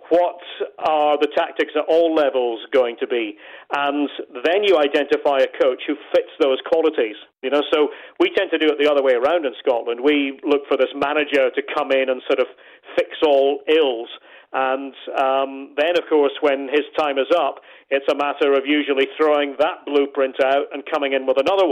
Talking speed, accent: 200 wpm, British